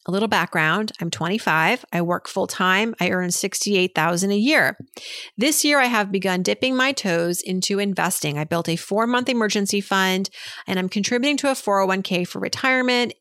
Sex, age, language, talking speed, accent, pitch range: female, 30-49, English, 170 wpm, American, 180-255 Hz